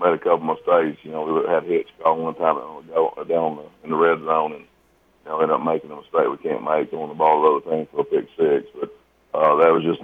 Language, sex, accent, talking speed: English, male, American, 295 wpm